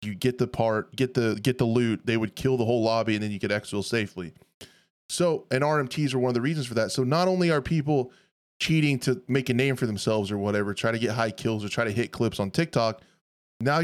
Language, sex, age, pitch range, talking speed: English, male, 20-39, 110-135 Hz, 250 wpm